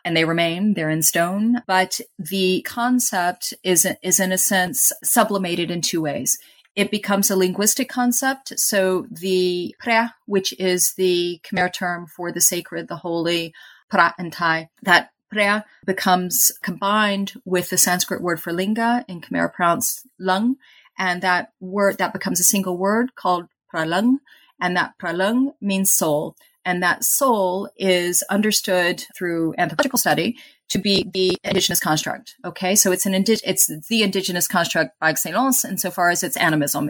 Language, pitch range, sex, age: English, 165-200 Hz, female, 30-49